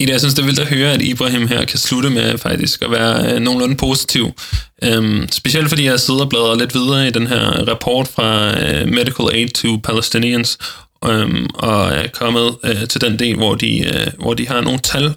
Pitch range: 115-130 Hz